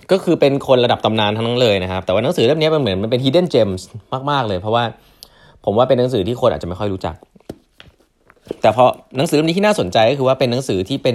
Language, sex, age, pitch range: Thai, male, 20-39, 95-125 Hz